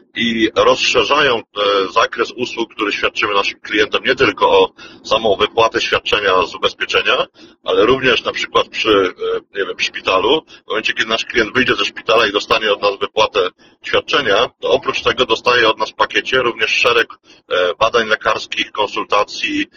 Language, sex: Polish, male